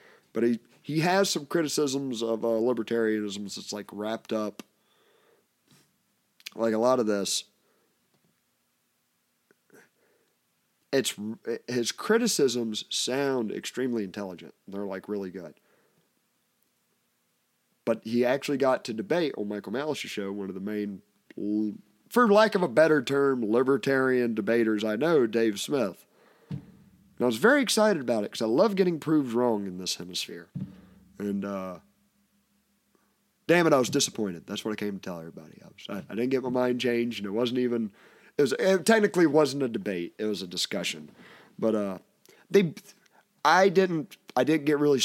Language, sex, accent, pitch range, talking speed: English, male, American, 105-150 Hz, 155 wpm